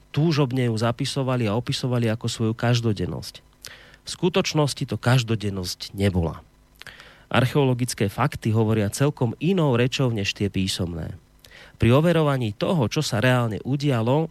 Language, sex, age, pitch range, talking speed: Slovak, male, 30-49, 105-135 Hz, 120 wpm